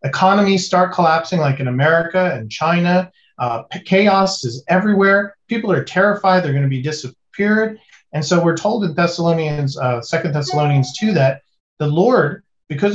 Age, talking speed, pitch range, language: 40-59, 155 wpm, 140-190 Hz, English